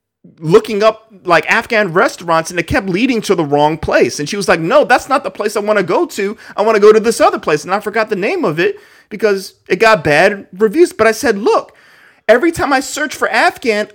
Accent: American